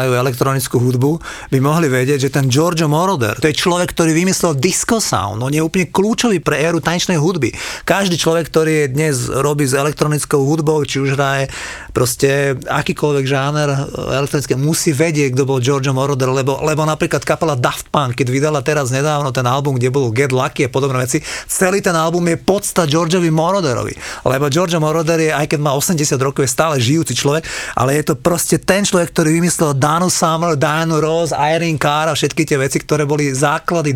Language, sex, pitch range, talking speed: Slovak, male, 135-165 Hz, 190 wpm